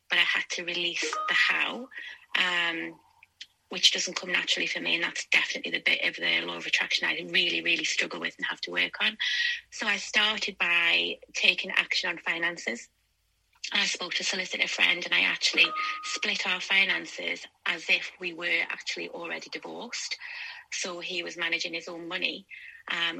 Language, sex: English, female